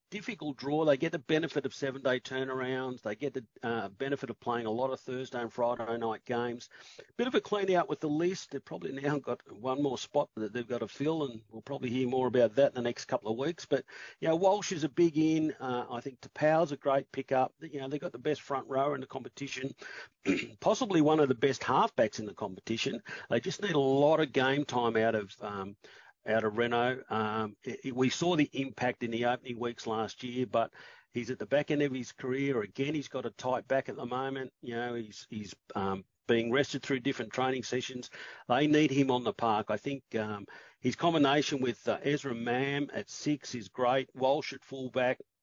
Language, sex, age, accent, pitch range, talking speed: English, male, 50-69, Australian, 120-145 Hz, 225 wpm